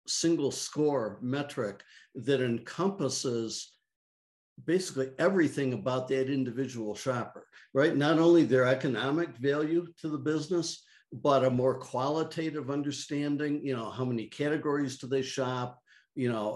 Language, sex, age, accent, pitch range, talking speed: English, male, 60-79, American, 125-150 Hz, 125 wpm